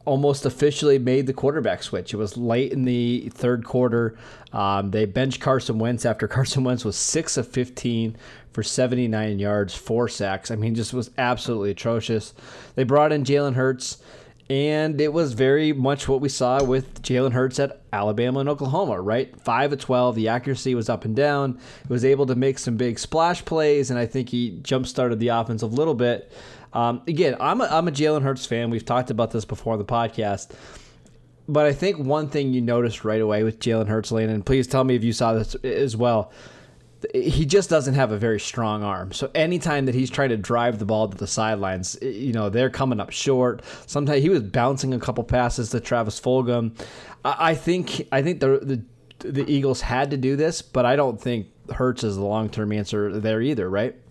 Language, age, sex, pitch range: English, 20-39, male, 115-140 Hz